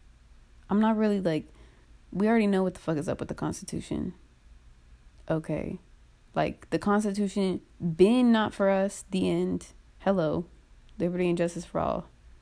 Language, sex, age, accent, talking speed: English, female, 20-39, American, 150 wpm